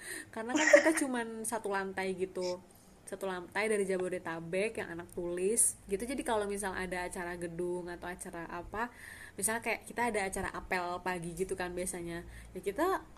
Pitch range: 185-220 Hz